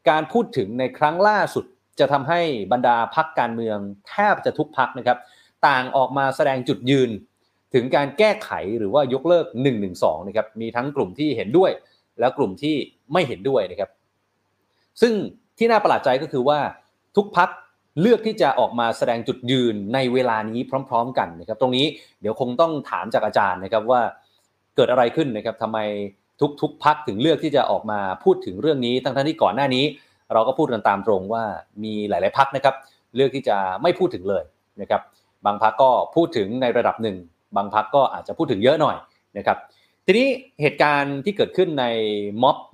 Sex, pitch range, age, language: male, 110-150 Hz, 30-49, Thai